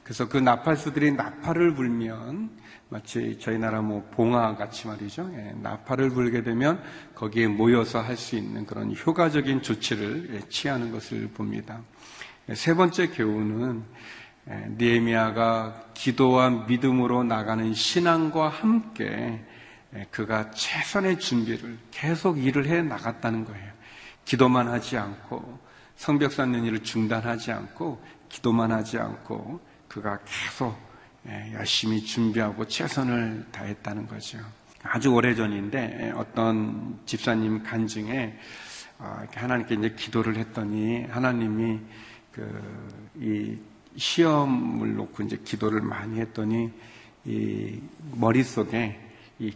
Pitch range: 110-125 Hz